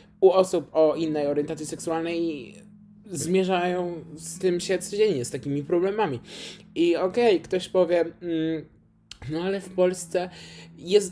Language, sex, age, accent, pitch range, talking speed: Polish, male, 20-39, native, 120-180 Hz, 135 wpm